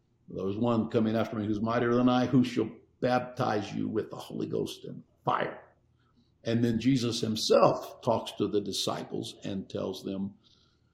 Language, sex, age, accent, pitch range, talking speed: English, male, 60-79, American, 100-120 Hz, 165 wpm